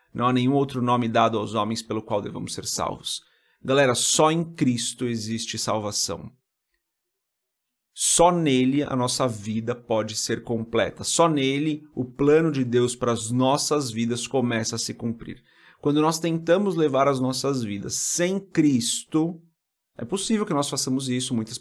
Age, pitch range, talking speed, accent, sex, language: 30-49, 120-155 Hz, 160 wpm, Brazilian, male, Portuguese